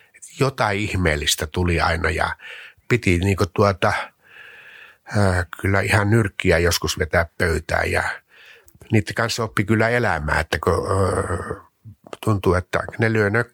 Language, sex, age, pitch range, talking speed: Finnish, male, 60-79, 90-110 Hz, 120 wpm